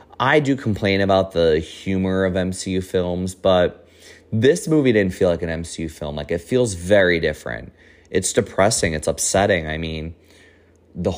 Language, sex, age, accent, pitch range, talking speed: English, male, 30-49, American, 85-95 Hz, 160 wpm